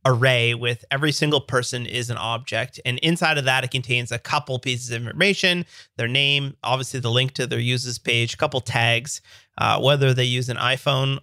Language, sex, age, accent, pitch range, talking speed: English, male, 30-49, American, 120-155 Hz, 200 wpm